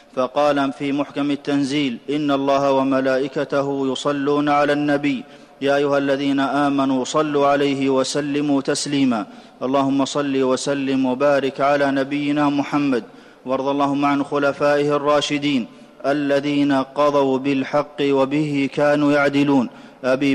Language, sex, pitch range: Arabic, male, 135-145 Hz